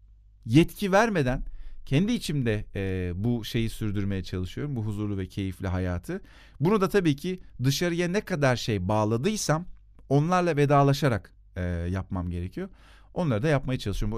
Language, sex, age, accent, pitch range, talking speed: Turkish, male, 40-59, native, 100-140 Hz, 125 wpm